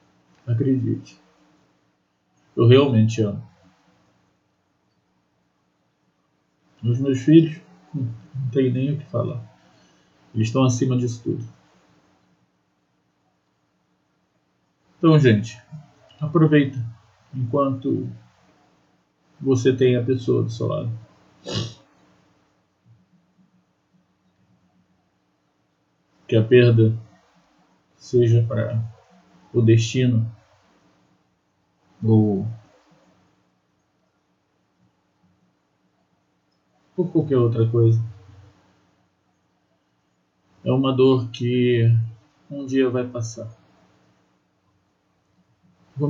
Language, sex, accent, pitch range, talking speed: Portuguese, male, Brazilian, 95-130 Hz, 65 wpm